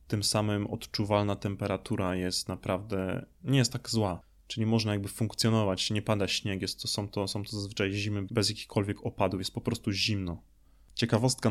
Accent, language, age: native, Polish, 20-39